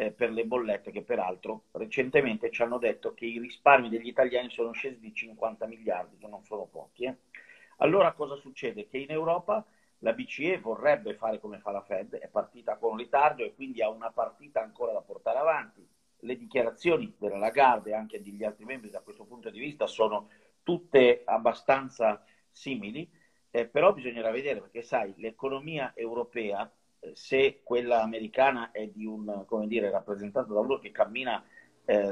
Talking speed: 170 wpm